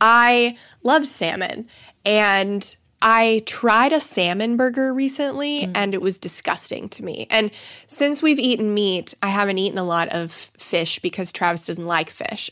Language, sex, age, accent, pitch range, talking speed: English, female, 20-39, American, 175-225 Hz, 160 wpm